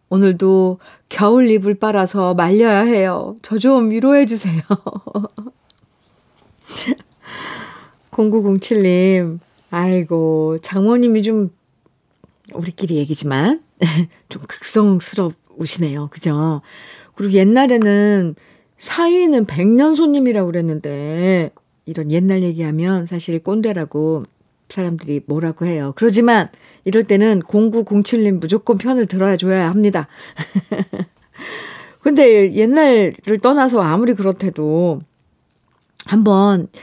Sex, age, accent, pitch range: female, 40-59, native, 170-215 Hz